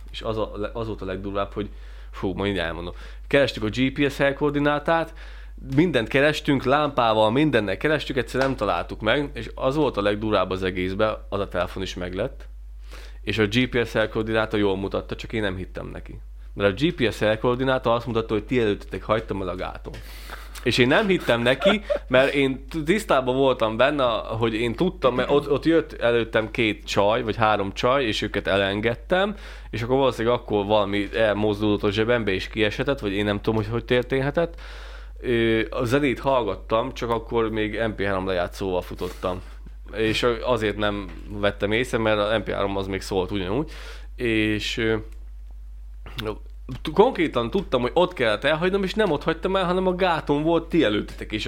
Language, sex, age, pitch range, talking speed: Hungarian, male, 20-39, 100-135 Hz, 165 wpm